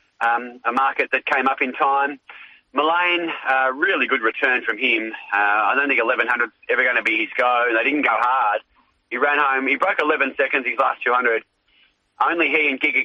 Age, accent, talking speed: 30-49, Australian, 200 wpm